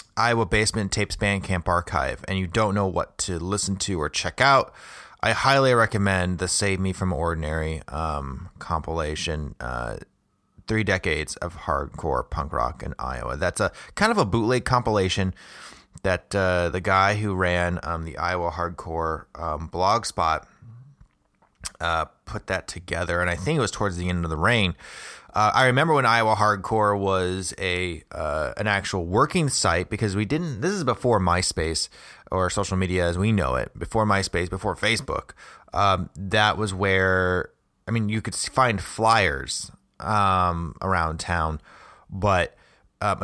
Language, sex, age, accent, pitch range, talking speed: English, male, 30-49, American, 85-105 Hz, 165 wpm